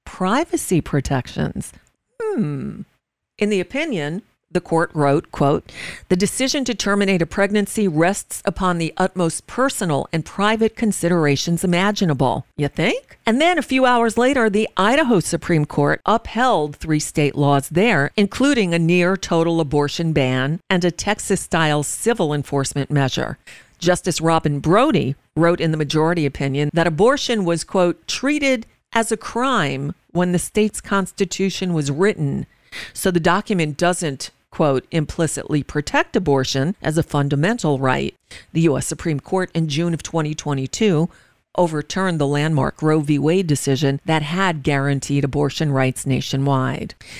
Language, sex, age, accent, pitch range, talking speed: English, female, 50-69, American, 145-195 Hz, 140 wpm